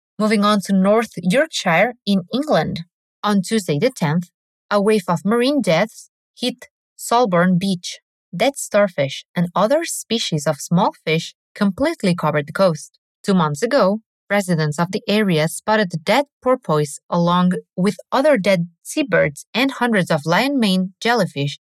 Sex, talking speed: female, 145 wpm